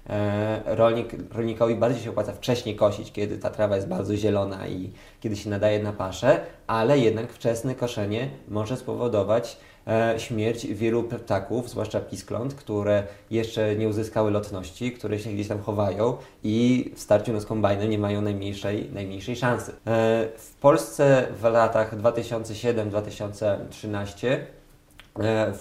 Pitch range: 100-115 Hz